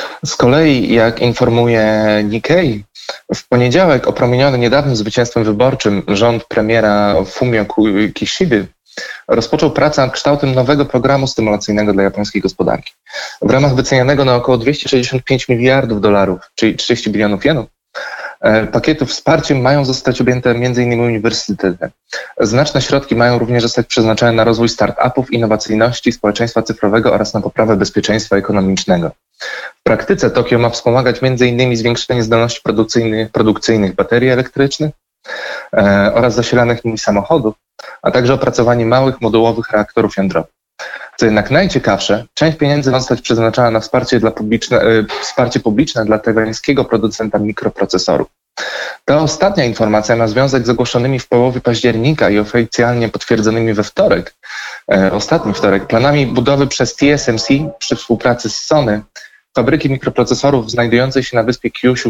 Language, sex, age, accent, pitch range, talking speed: Polish, male, 20-39, native, 110-130 Hz, 130 wpm